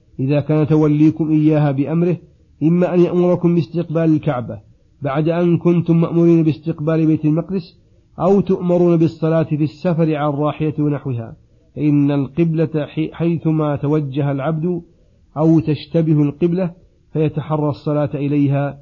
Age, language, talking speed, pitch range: 40-59, Arabic, 115 wpm, 140-160 Hz